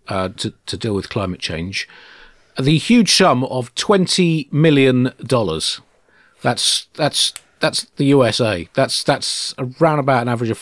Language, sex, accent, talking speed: English, male, British, 145 wpm